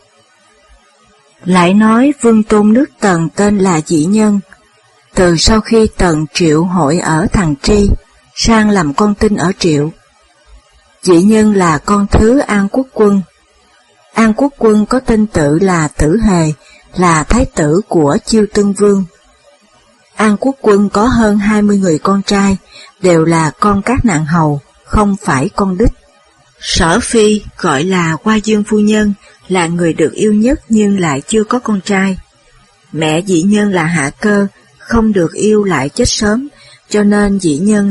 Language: Vietnamese